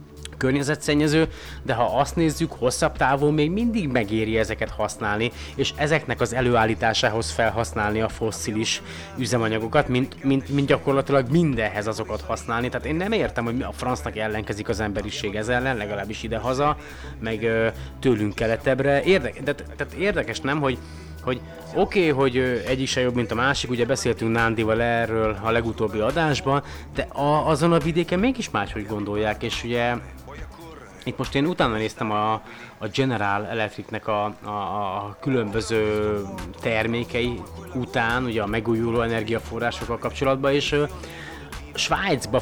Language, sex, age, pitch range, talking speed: Hungarian, male, 30-49, 105-130 Hz, 145 wpm